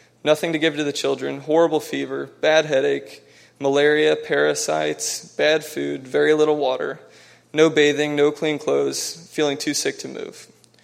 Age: 20-39